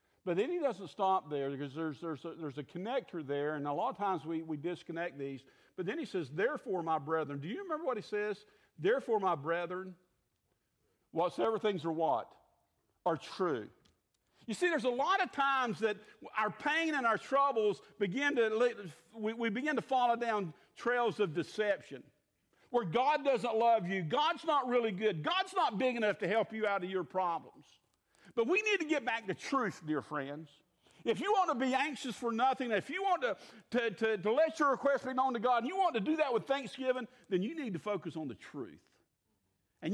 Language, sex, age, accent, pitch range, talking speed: English, male, 50-69, American, 170-260 Hz, 205 wpm